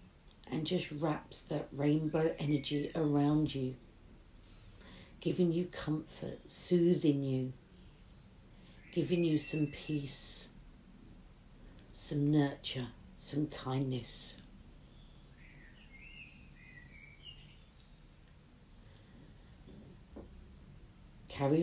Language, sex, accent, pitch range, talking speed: English, female, British, 125-160 Hz, 60 wpm